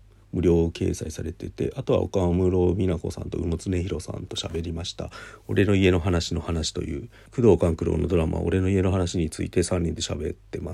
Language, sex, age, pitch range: Japanese, male, 40-59, 85-105 Hz